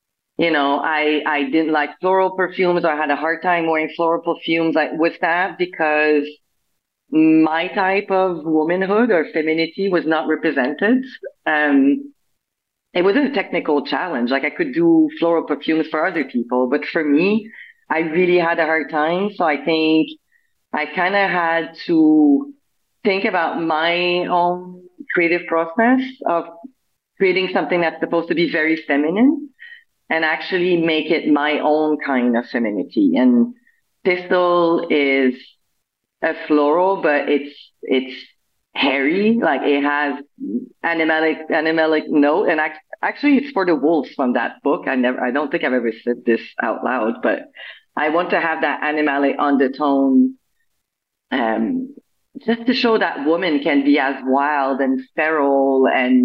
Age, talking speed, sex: 30-49, 150 wpm, female